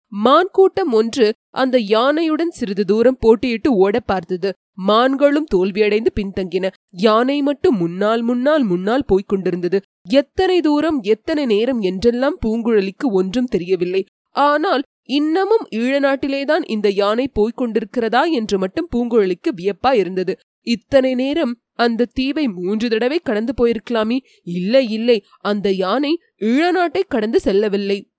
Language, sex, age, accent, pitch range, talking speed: Tamil, female, 20-39, native, 205-280 Hz, 120 wpm